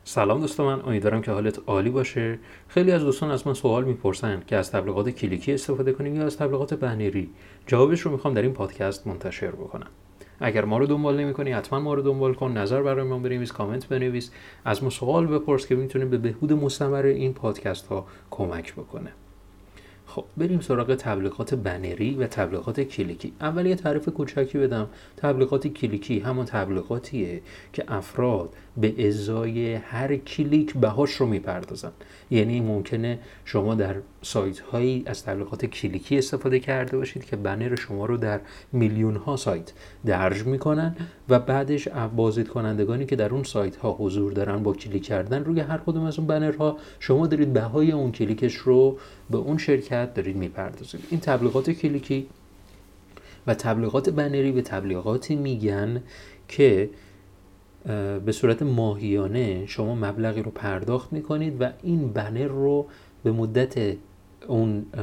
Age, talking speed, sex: 30-49, 155 wpm, male